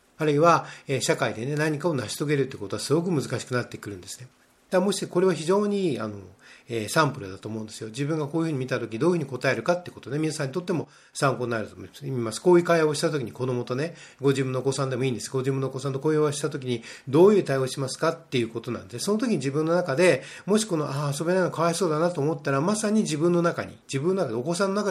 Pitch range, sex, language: 130-175 Hz, male, Japanese